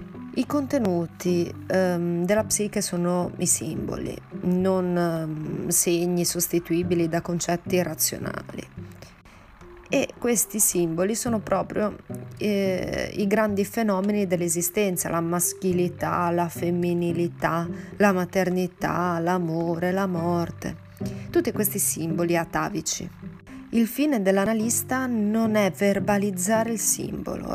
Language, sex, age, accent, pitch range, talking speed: Italian, female, 30-49, native, 175-210 Hz, 100 wpm